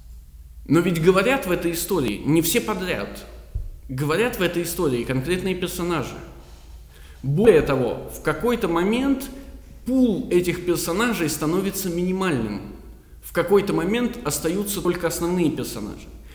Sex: male